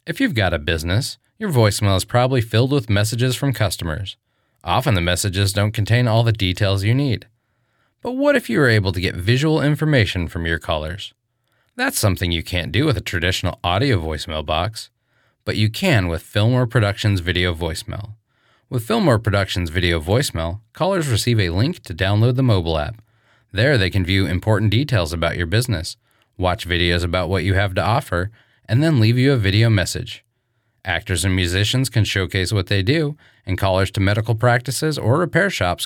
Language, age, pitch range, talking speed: English, 30-49, 90-120 Hz, 185 wpm